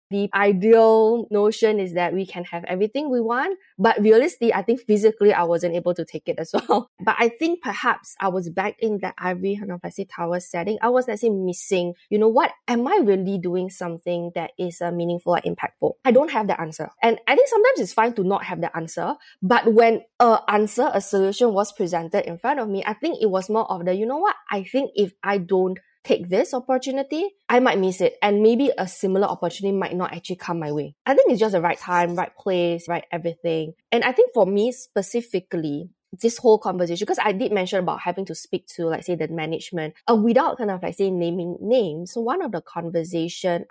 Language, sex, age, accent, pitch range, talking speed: English, female, 20-39, Malaysian, 175-225 Hz, 220 wpm